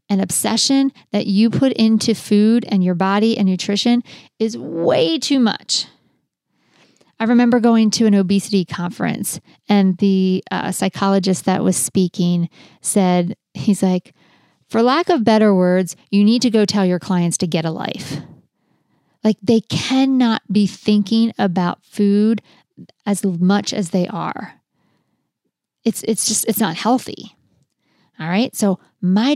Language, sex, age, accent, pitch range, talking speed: English, female, 40-59, American, 190-225 Hz, 145 wpm